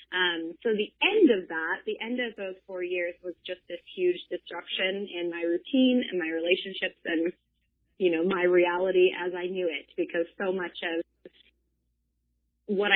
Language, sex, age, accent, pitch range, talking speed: English, female, 20-39, American, 170-220 Hz, 170 wpm